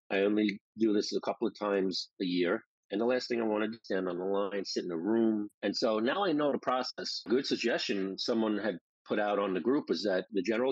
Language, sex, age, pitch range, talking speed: English, male, 40-59, 100-130 Hz, 260 wpm